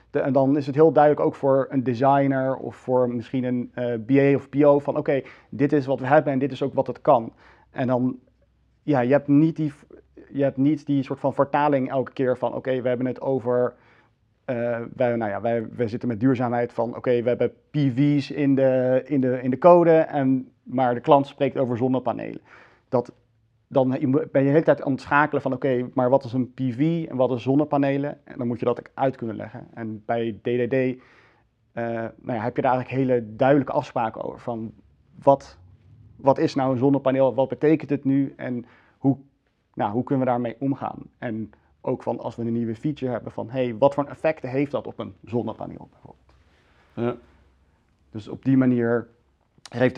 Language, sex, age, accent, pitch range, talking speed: Dutch, male, 40-59, Dutch, 120-140 Hz, 195 wpm